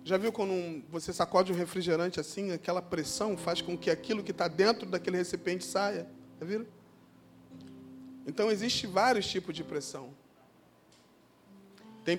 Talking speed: 150 wpm